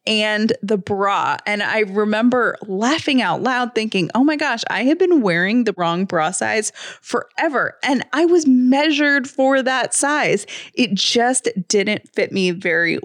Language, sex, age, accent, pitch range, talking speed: English, female, 20-39, American, 200-265 Hz, 160 wpm